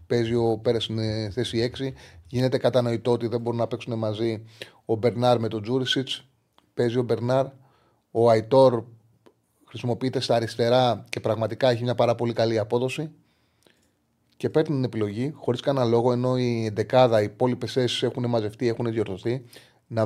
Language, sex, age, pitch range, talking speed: Greek, male, 30-49, 115-140 Hz, 155 wpm